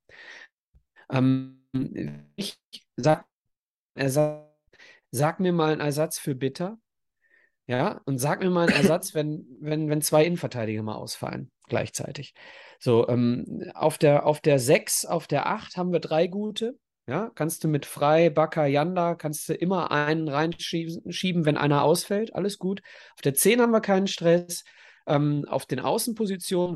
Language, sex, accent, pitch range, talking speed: German, male, German, 150-200 Hz, 145 wpm